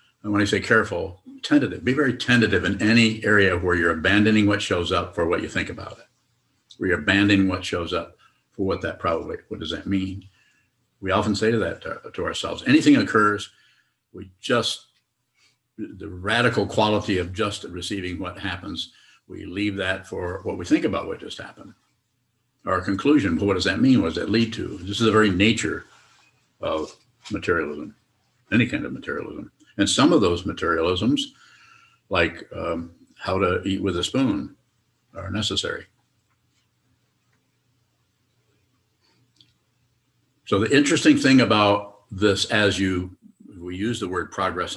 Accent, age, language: American, 60-79, English